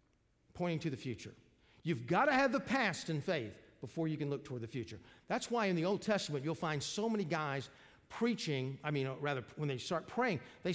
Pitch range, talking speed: 130-195 Hz, 220 wpm